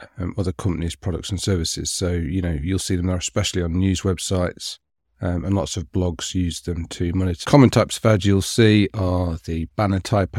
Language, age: English, 40-59